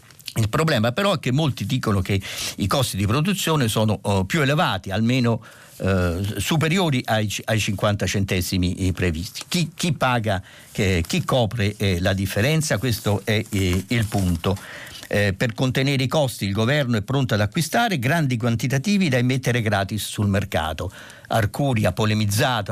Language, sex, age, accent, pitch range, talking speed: Italian, male, 50-69, native, 95-125 Hz, 150 wpm